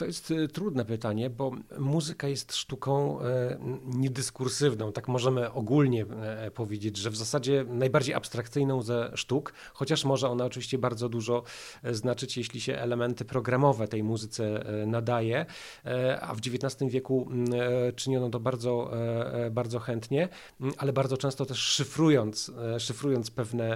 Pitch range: 120-140 Hz